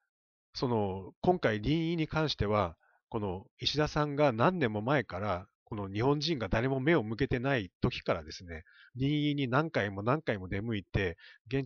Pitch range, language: 105-155 Hz, Japanese